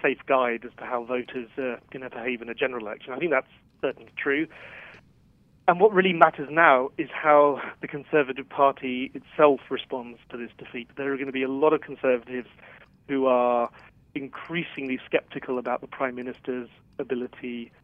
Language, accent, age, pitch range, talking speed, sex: English, British, 30-49, 125-145 Hz, 175 wpm, male